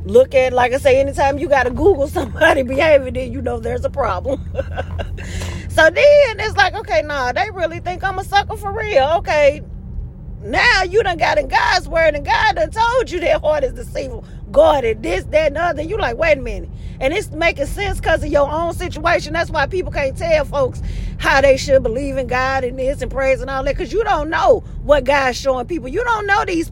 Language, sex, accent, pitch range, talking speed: English, female, American, 275-410 Hz, 220 wpm